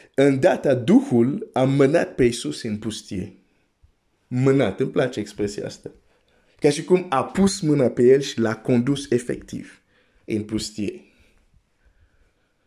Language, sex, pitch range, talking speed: Romanian, male, 105-135 Hz, 135 wpm